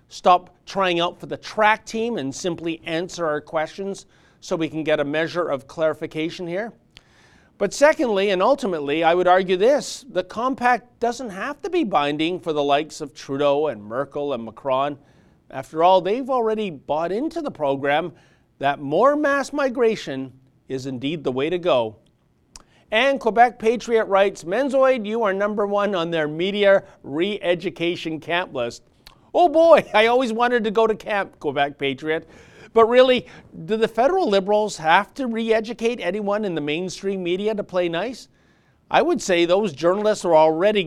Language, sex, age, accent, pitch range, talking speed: English, male, 40-59, American, 150-215 Hz, 165 wpm